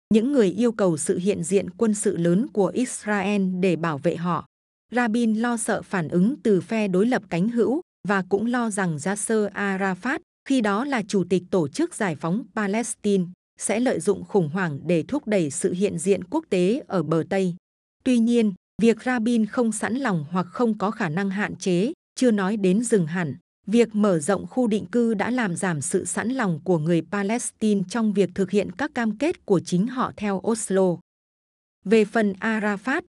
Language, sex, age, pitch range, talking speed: Vietnamese, female, 20-39, 185-230 Hz, 195 wpm